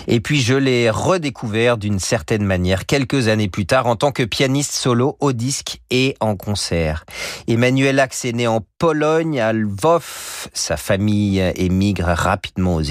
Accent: French